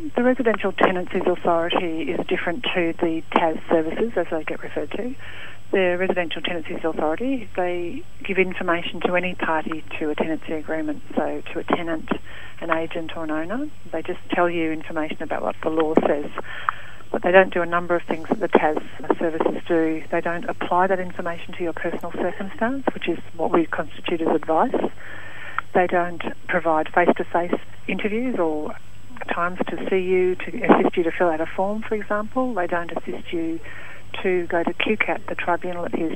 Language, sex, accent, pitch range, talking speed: English, female, Australian, 165-180 Hz, 180 wpm